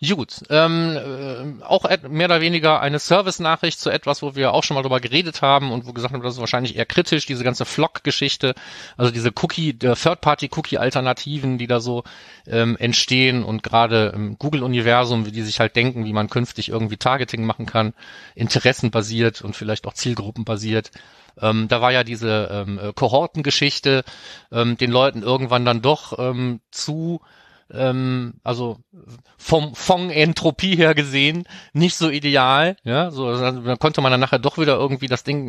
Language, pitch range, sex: German, 120-150 Hz, male